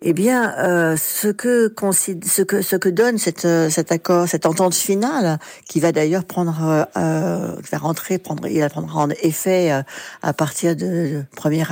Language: French